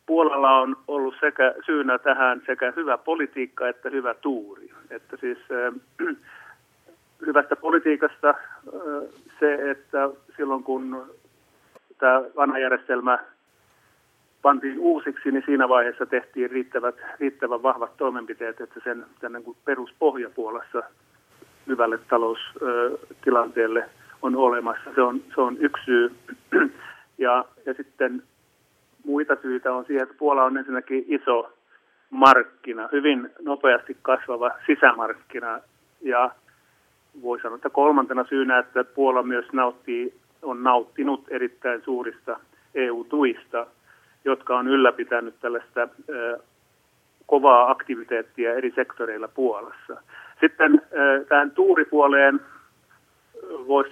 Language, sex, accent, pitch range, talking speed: Finnish, male, native, 125-145 Hz, 105 wpm